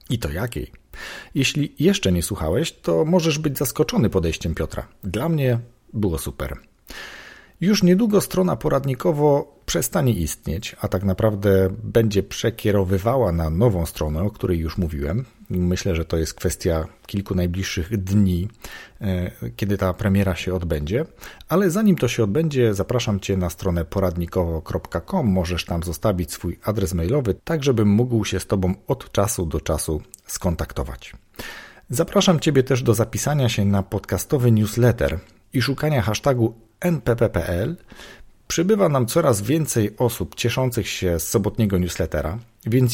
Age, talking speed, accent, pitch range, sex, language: 40-59, 140 wpm, native, 95-130 Hz, male, Polish